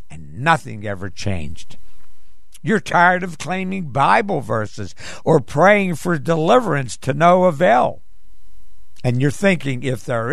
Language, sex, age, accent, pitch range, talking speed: English, male, 60-79, American, 100-155 Hz, 130 wpm